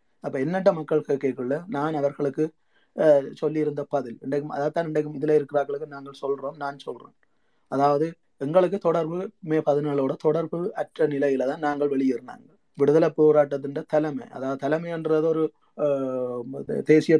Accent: native